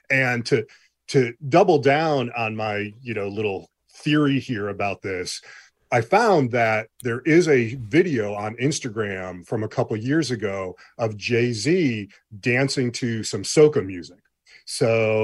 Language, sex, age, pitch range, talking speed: English, male, 40-59, 110-130 Hz, 145 wpm